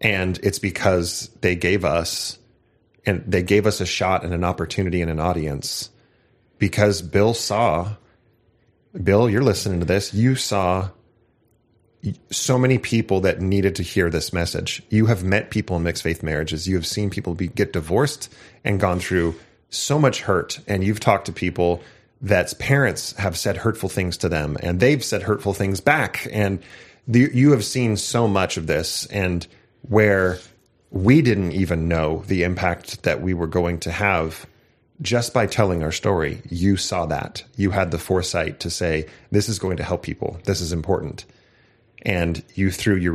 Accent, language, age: American, English, 30-49